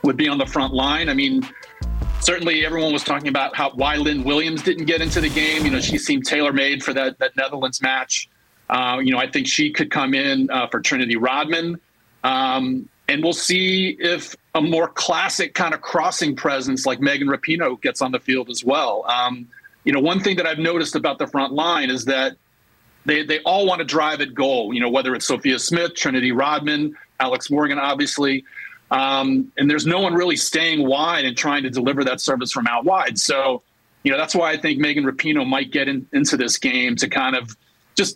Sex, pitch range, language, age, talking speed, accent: male, 135-165 Hz, English, 40-59, 210 wpm, American